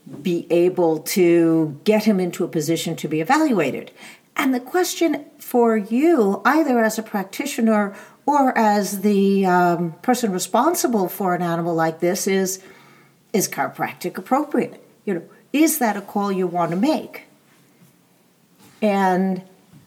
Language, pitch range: English, 165-220 Hz